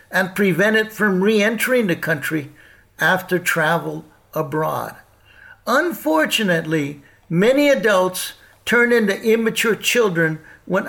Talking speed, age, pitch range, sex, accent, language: 100 wpm, 60-79, 160-210 Hz, male, American, English